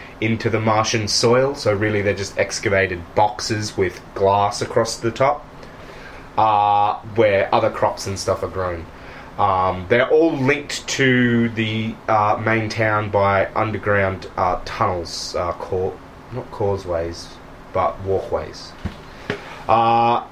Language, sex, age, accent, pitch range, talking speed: English, male, 20-39, Australian, 105-130 Hz, 125 wpm